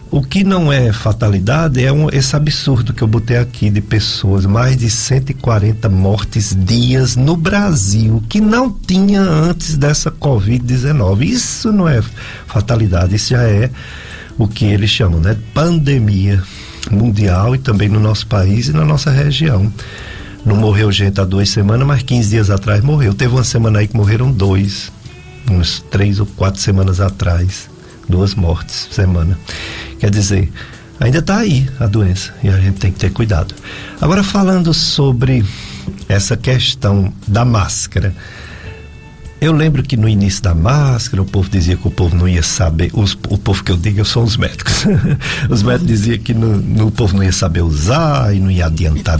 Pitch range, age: 95-130 Hz, 50-69